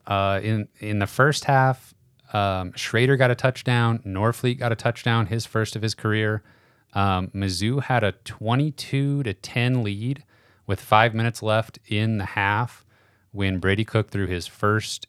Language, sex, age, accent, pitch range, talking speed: English, male, 30-49, American, 95-115 Hz, 165 wpm